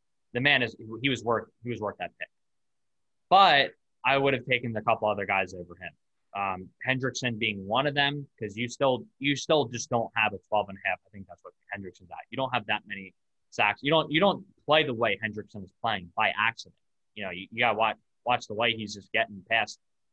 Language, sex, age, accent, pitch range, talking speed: English, male, 20-39, American, 100-130 Hz, 235 wpm